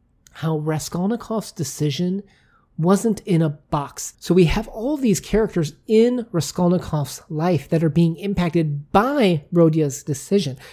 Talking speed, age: 130 wpm, 30-49